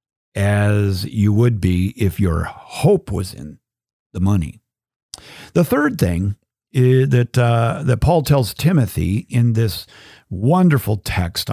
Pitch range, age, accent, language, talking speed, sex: 105-145 Hz, 50-69, American, English, 130 wpm, male